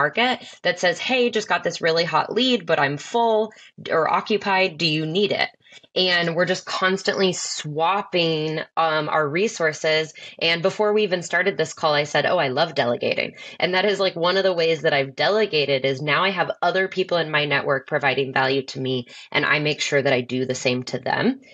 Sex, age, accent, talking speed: female, 20-39, American, 210 wpm